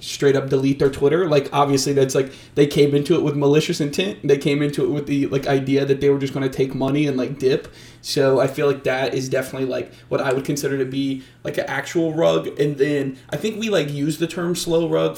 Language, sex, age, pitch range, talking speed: English, male, 20-39, 135-145 Hz, 255 wpm